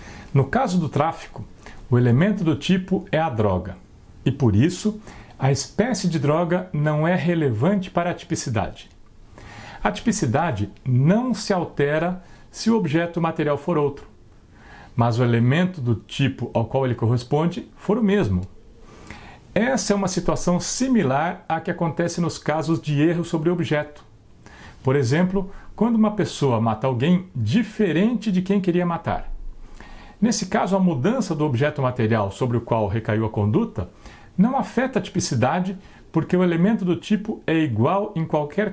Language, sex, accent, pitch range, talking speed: Portuguese, male, Brazilian, 115-185 Hz, 155 wpm